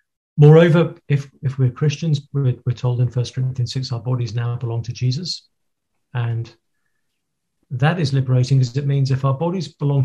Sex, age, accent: male, 40-59, British